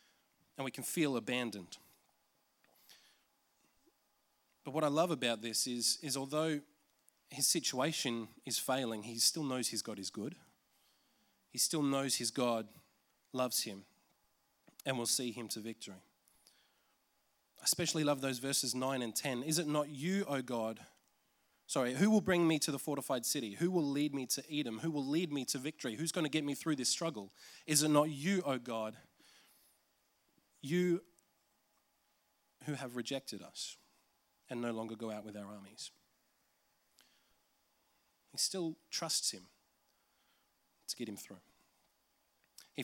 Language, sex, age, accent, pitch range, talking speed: English, male, 20-39, Australian, 120-160 Hz, 155 wpm